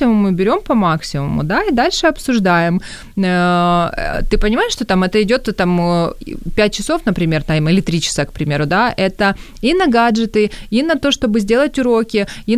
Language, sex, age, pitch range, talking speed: Ukrainian, female, 20-39, 170-215 Hz, 170 wpm